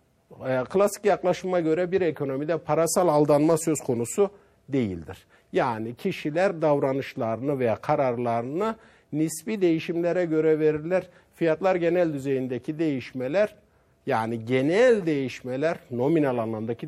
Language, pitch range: Turkish, 120-185 Hz